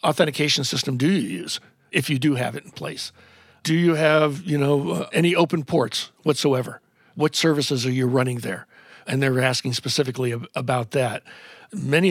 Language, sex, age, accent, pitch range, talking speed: English, male, 50-69, American, 130-150 Hz, 170 wpm